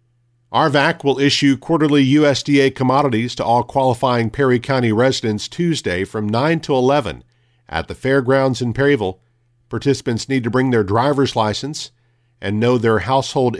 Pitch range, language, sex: 115-135 Hz, English, male